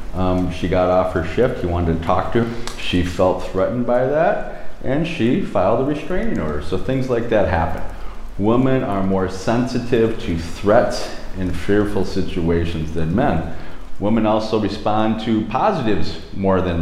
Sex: male